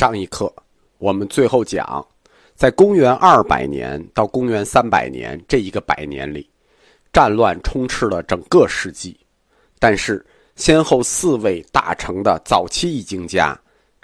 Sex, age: male, 50-69